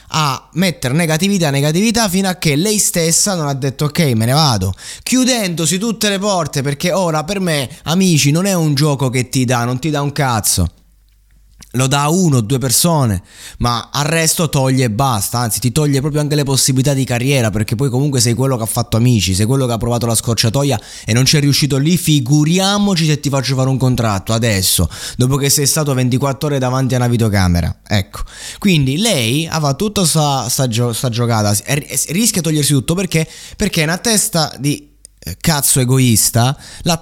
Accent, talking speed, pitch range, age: native, 195 wpm, 120-165 Hz, 20-39